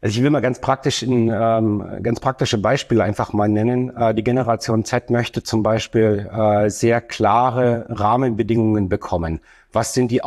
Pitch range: 110-125 Hz